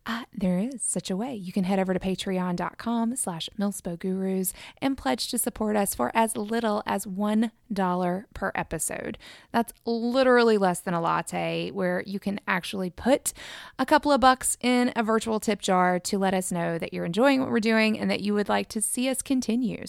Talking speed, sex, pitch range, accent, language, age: 195 wpm, female, 185-245 Hz, American, English, 20-39